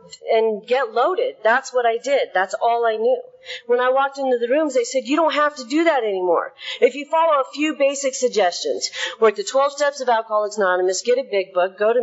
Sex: female